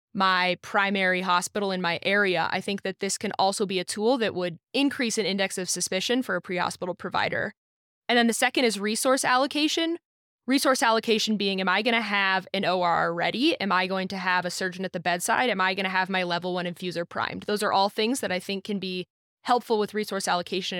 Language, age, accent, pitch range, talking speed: English, 20-39, American, 180-220 Hz, 220 wpm